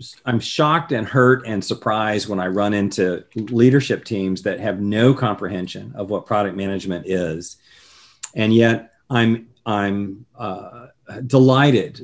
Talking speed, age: 135 wpm, 40-59